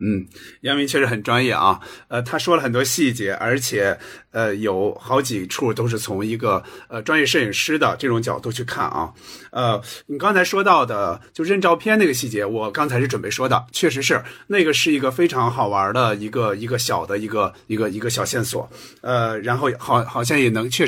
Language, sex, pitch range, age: Chinese, male, 120-155 Hz, 50-69